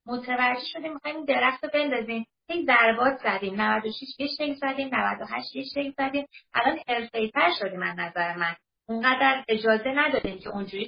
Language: Persian